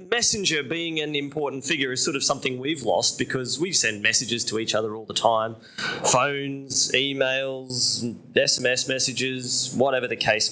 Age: 20-39